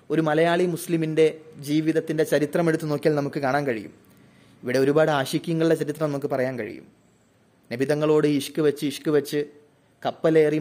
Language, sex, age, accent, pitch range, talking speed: Malayalam, male, 20-39, native, 140-170 Hz, 130 wpm